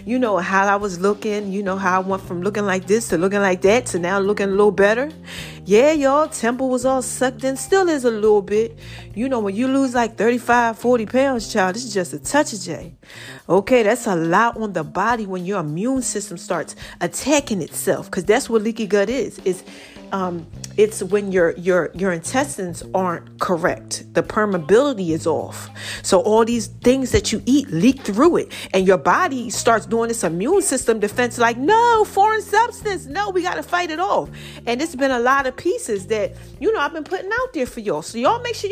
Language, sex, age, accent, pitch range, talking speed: English, female, 40-59, American, 190-265 Hz, 215 wpm